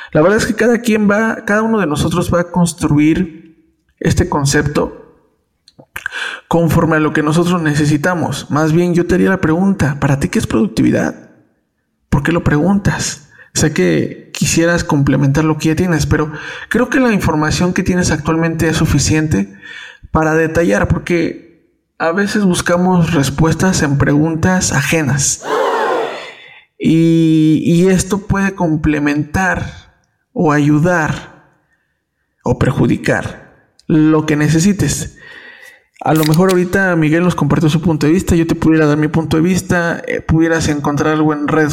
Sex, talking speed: male, 150 wpm